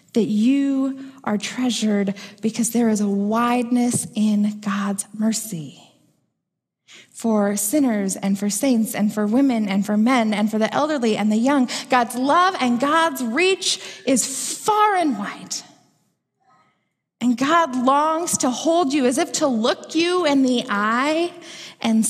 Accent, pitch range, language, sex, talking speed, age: American, 210-265 Hz, English, female, 145 wpm, 20-39